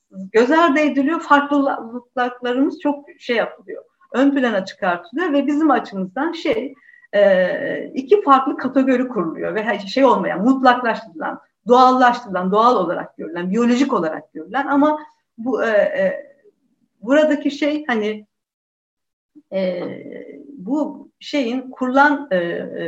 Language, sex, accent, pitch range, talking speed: Turkish, female, native, 205-285 Hz, 110 wpm